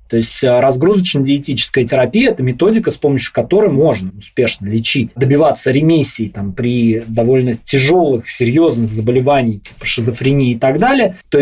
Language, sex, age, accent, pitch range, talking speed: Russian, male, 20-39, native, 130-175 Hz, 135 wpm